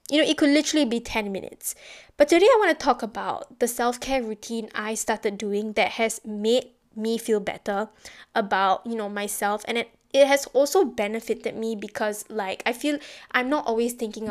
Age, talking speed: 10-29, 195 wpm